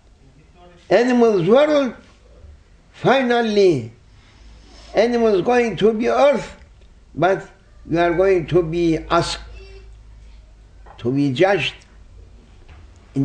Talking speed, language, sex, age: 85 wpm, English, male, 60-79